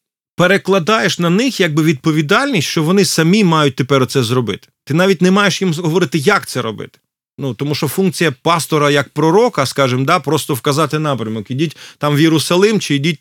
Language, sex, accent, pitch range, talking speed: Ukrainian, male, native, 130-170 Hz, 175 wpm